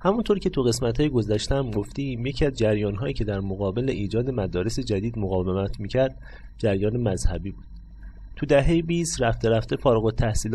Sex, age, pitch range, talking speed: male, 30-49, 100-130 Hz, 160 wpm